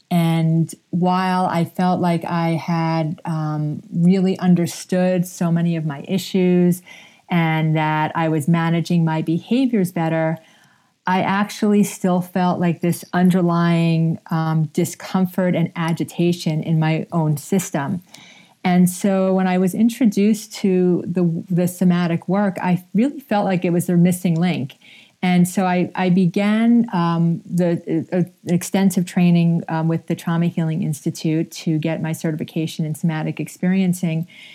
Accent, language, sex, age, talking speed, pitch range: American, English, female, 40-59, 140 wpm, 165-185 Hz